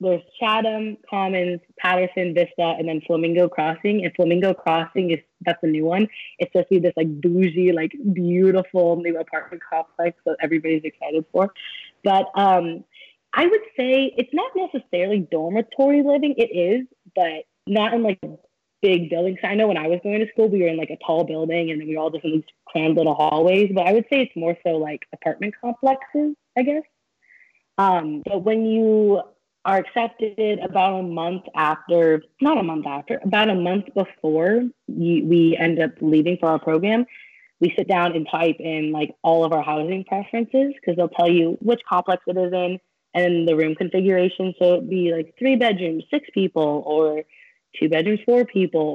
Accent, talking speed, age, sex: American, 185 wpm, 20-39, female